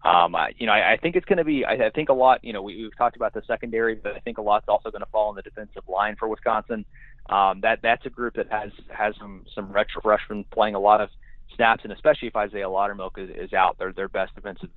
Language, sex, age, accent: English, male, 30-49, American